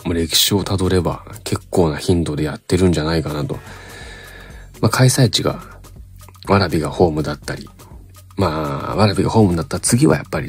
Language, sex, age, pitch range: Japanese, male, 40-59, 80-95 Hz